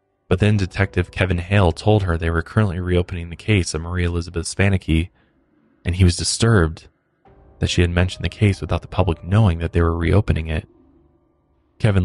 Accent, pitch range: American, 85-100 Hz